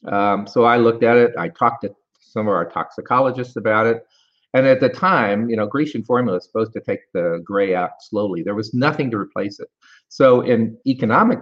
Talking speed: 210 wpm